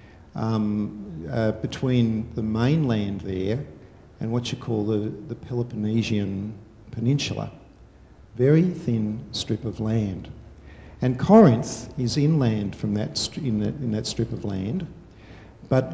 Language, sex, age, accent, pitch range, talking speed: English, male, 50-69, Australian, 110-130 Hz, 130 wpm